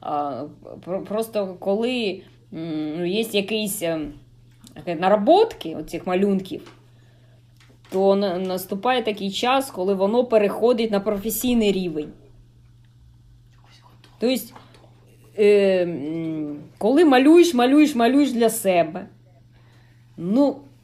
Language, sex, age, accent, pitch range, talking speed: Ukrainian, female, 20-39, native, 150-235 Hz, 70 wpm